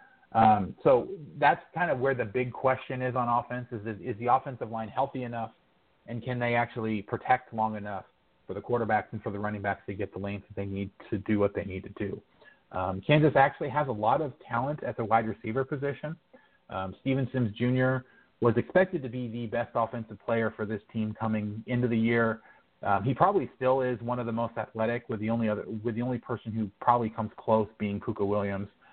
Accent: American